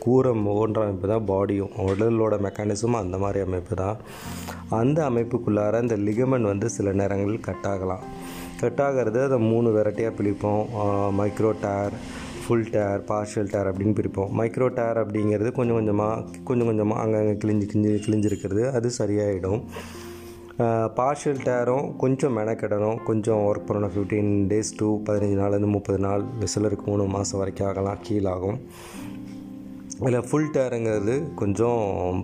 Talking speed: 130 wpm